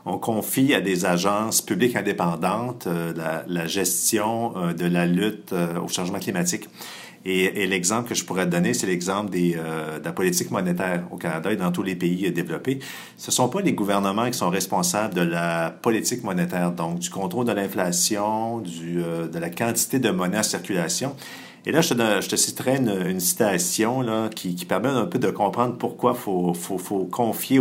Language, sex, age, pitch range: French, male, 50-69, 90-120 Hz